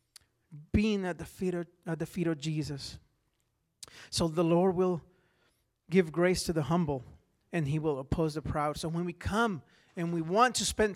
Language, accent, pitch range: English, American, 155-195 Hz